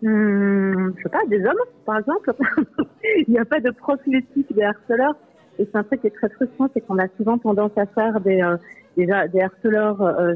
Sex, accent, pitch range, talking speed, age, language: female, French, 185-230 Hz, 220 wpm, 40-59, French